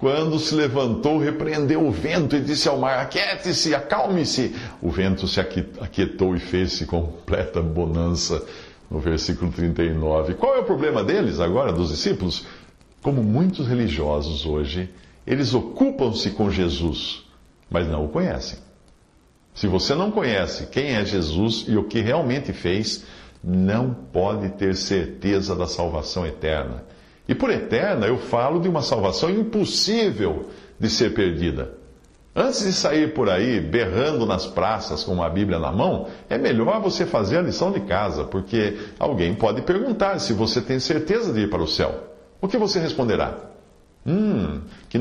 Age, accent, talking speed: 60-79, Brazilian, 155 wpm